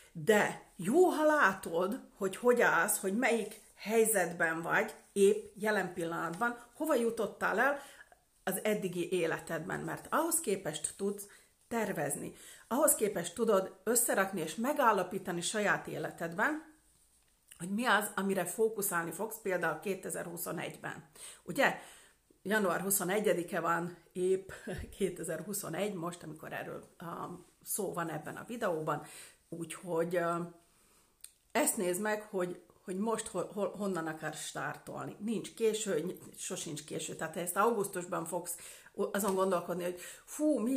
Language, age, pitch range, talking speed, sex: Hungarian, 40-59, 175-225 Hz, 120 wpm, female